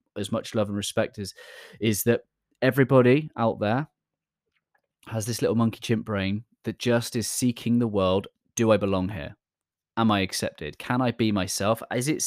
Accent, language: British, English